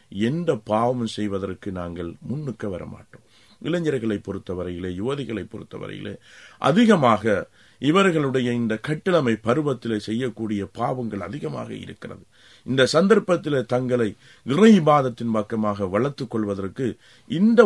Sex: male